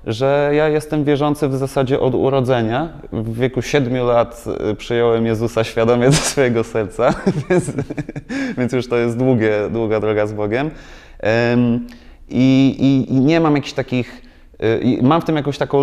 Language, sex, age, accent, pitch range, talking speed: Polish, male, 30-49, native, 110-140 Hz, 150 wpm